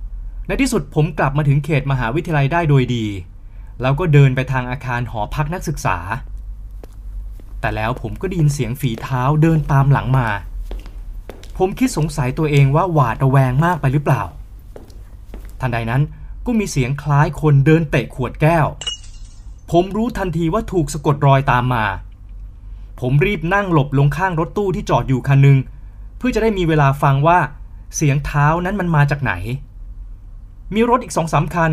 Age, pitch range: 20-39, 110-165 Hz